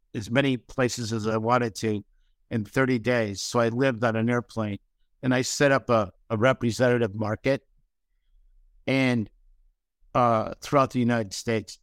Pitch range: 105-125 Hz